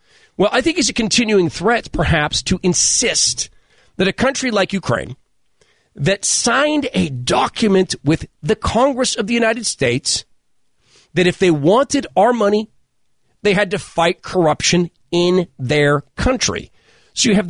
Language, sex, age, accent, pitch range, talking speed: English, male, 40-59, American, 165-230 Hz, 150 wpm